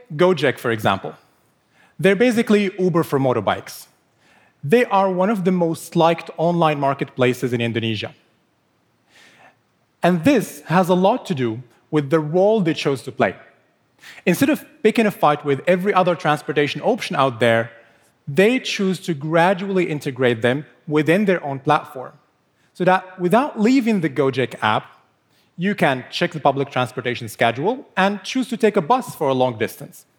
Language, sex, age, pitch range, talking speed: English, male, 30-49, 135-185 Hz, 155 wpm